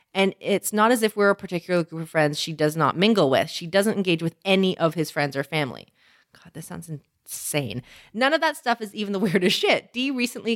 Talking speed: 235 wpm